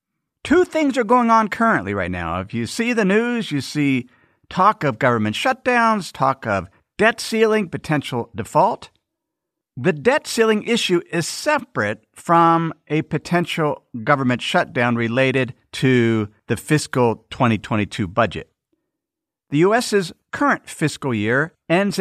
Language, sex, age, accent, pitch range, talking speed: English, male, 50-69, American, 130-185 Hz, 130 wpm